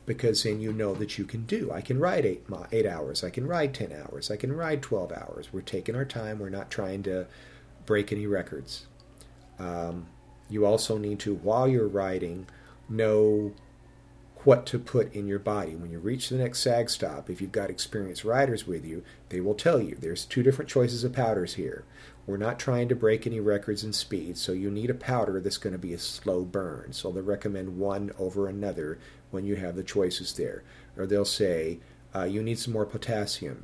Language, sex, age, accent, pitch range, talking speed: English, male, 50-69, American, 95-120 Hz, 210 wpm